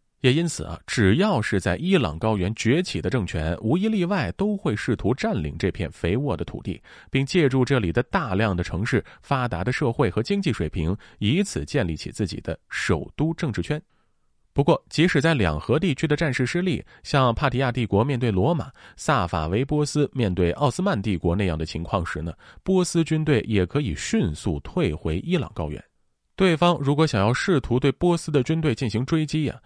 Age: 30-49